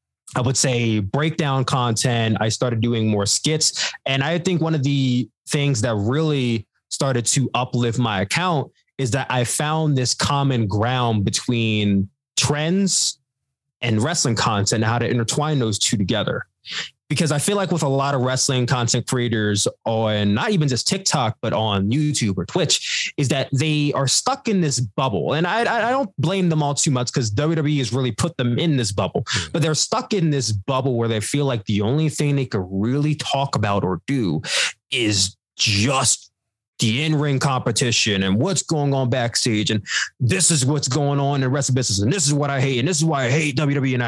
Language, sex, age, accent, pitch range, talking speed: English, male, 20-39, American, 115-150 Hz, 195 wpm